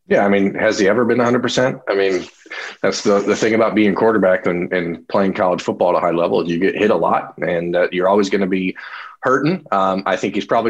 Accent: American